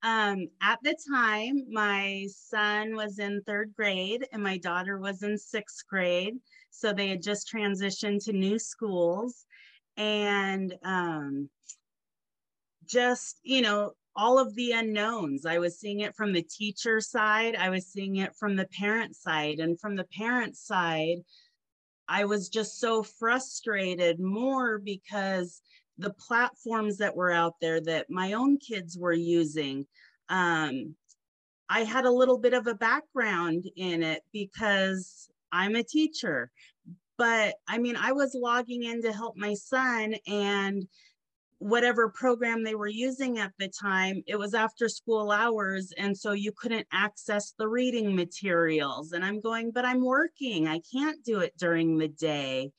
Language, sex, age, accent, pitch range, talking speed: English, female, 30-49, American, 185-230 Hz, 155 wpm